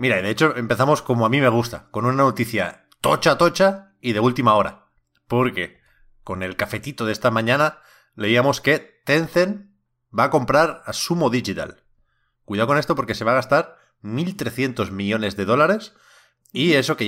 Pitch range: 105-135 Hz